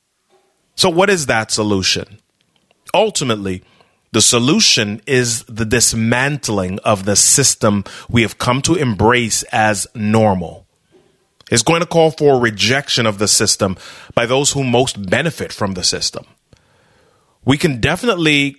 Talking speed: 130 wpm